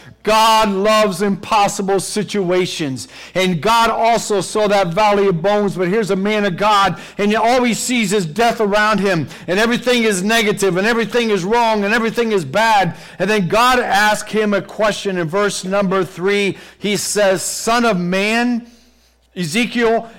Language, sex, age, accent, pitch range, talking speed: English, male, 50-69, American, 195-245 Hz, 165 wpm